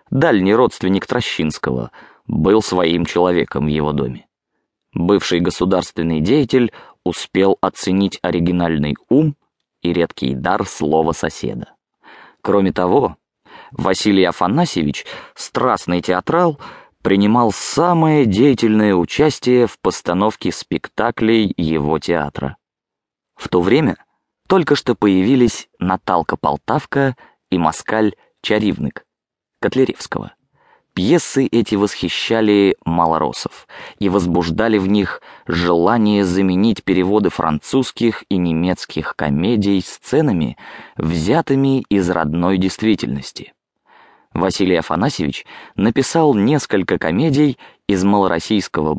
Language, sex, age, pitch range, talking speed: English, male, 20-39, 85-120 Hz, 90 wpm